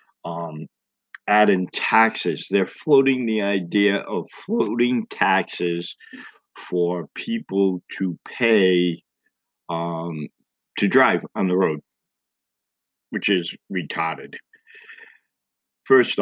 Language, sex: English, male